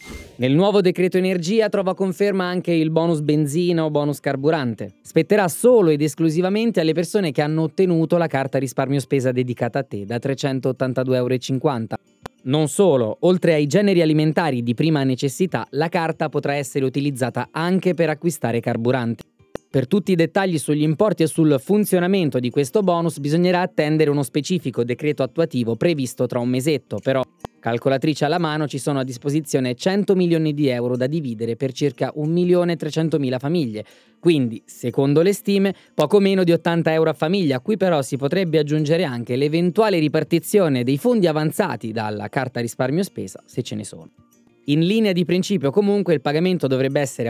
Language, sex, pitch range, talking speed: Italian, male, 130-175 Hz, 165 wpm